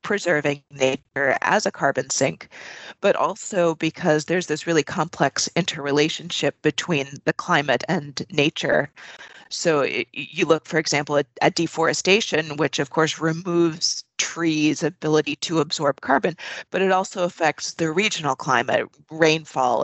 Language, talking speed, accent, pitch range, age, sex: English, 130 wpm, American, 150-175 Hz, 30-49, female